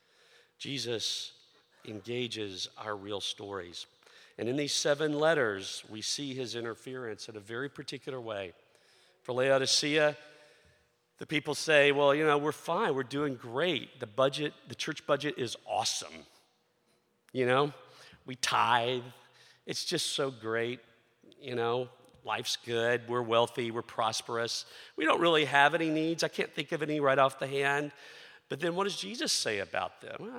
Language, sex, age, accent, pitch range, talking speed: English, male, 50-69, American, 110-145 Hz, 155 wpm